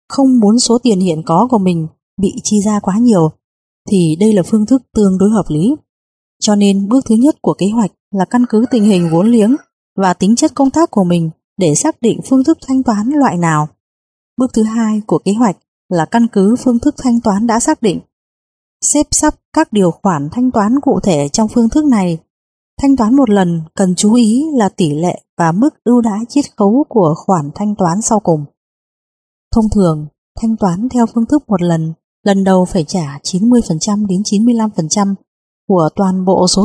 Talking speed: 205 wpm